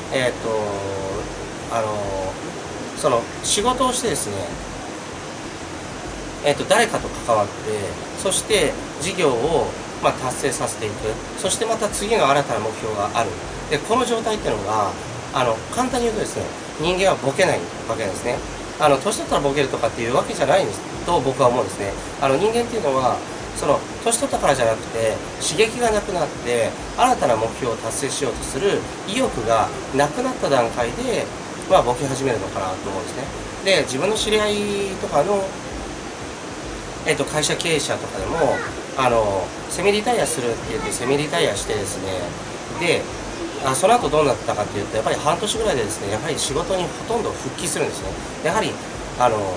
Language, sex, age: Japanese, male, 30-49